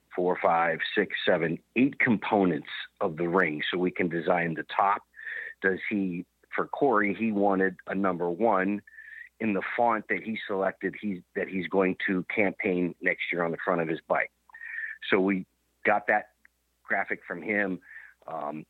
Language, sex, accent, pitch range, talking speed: English, male, American, 90-110 Hz, 165 wpm